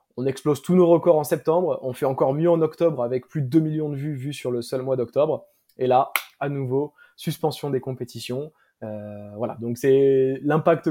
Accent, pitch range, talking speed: French, 125-155 Hz, 210 wpm